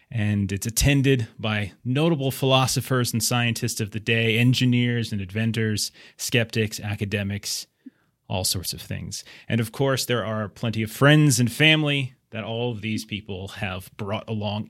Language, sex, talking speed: English, male, 155 wpm